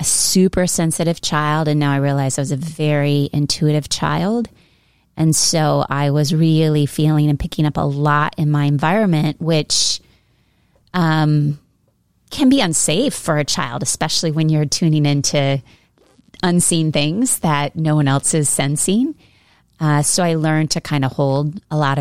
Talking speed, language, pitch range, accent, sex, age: 160 wpm, English, 140-165 Hz, American, female, 30-49